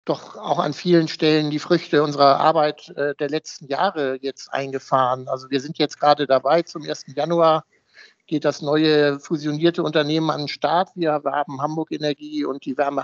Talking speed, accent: 175 wpm, German